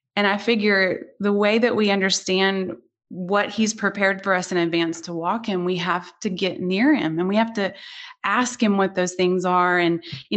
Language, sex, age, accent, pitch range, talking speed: English, female, 30-49, American, 170-200 Hz, 210 wpm